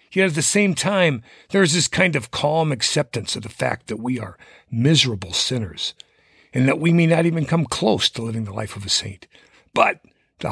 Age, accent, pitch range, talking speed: 50-69, American, 110-160 Hz, 210 wpm